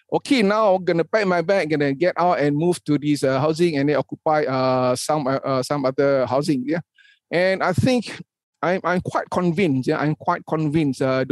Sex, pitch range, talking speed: male, 150-210 Hz, 200 wpm